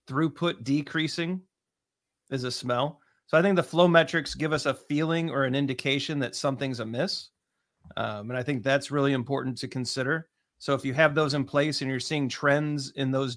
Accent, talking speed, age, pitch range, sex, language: American, 195 wpm, 40-59, 130-160 Hz, male, English